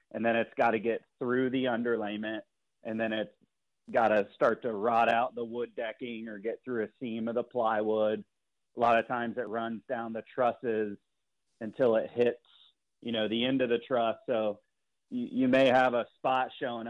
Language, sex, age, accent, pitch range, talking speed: English, male, 30-49, American, 110-120 Hz, 200 wpm